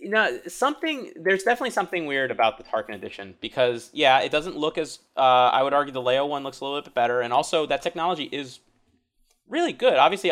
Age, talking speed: 20-39, 215 wpm